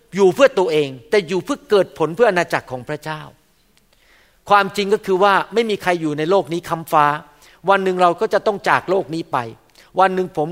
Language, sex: Thai, male